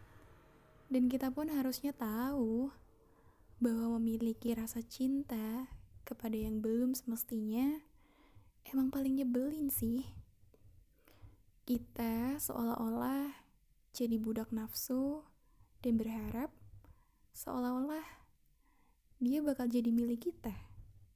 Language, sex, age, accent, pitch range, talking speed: Indonesian, female, 10-29, native, 215-255 Hz, 85 wpm